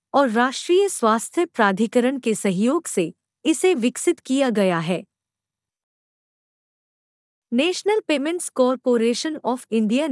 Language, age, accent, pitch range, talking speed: Hindi, 50-69, native, 220-315 Hz, 100 wpm